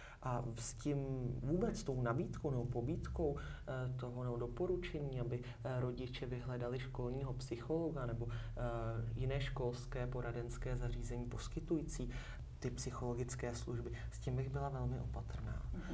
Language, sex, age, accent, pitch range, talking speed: Czech, male, 30-49, native, 120-135 Hz, 115 wpm